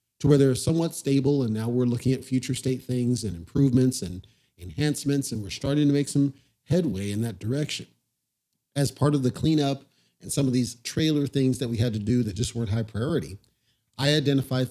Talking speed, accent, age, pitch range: 205 wpm, American, 40-59, 115-145 Hz